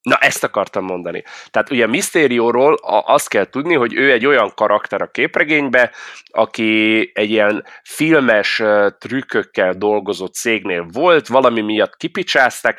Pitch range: 105-145 Hz